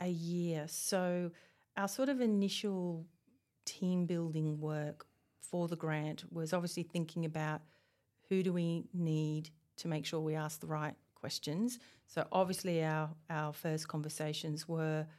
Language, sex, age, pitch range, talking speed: English, female, 40-59, 155-170 Hz, 140 wpm